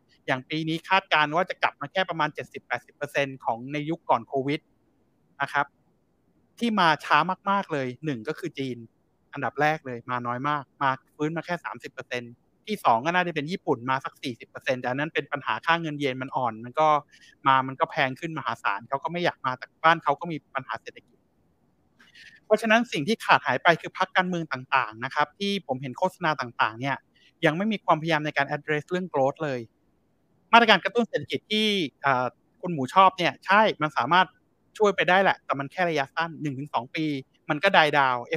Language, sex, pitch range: Thai, male, 140-180 Hz